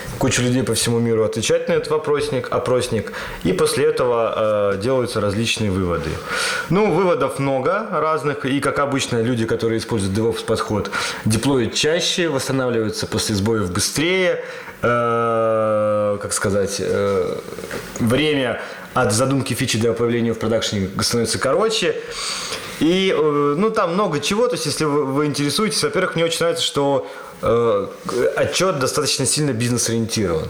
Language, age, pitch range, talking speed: Russian, 20-39, 110-175 Hz, 140 wpm